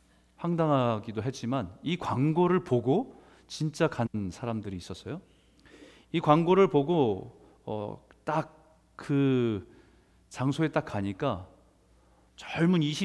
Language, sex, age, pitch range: Korean, male, 40-59, 100-155 Hz